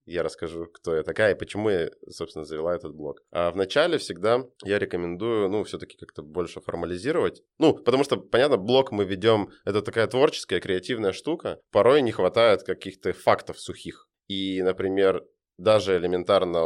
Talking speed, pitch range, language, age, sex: 160 wpm, 90-130 Hz, Russian, 20-39, male